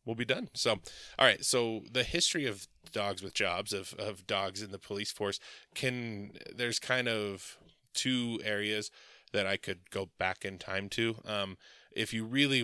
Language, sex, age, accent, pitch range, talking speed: English, male, 20-39, American, 95-110 Hz, 180 wpm